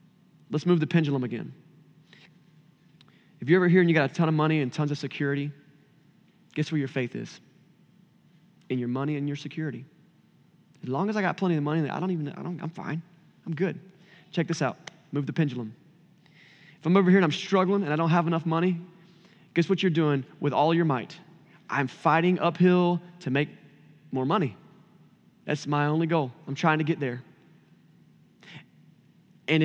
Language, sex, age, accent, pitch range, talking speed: English, male, 20-39, American, 155-185 Hz, 180 wpm